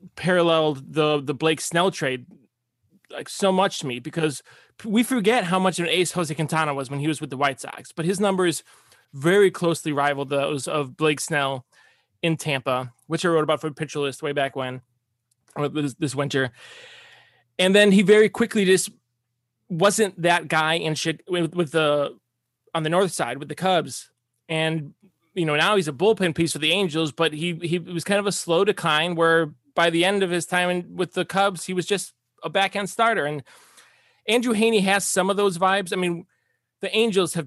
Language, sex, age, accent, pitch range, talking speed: English, male, 20-39, American, 145-190 Hz, 200 wpm